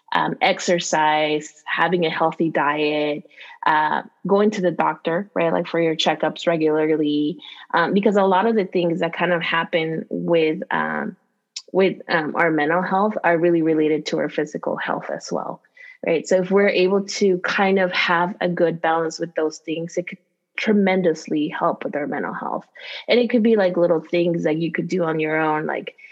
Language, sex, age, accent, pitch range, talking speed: English, female, 20-39, American, 165-190 Hz, 190 wpm